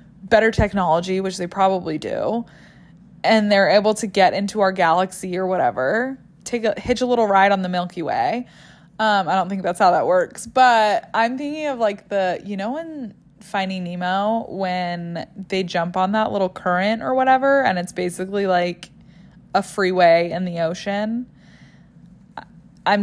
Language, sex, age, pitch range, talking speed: English, female, 20-39, 180-235 Hz, 165 wpm